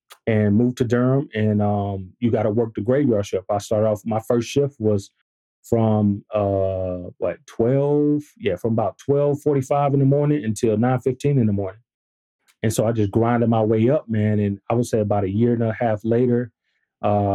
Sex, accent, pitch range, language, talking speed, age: male, American, 105-135 Hz, English, 200 wpm, 30-49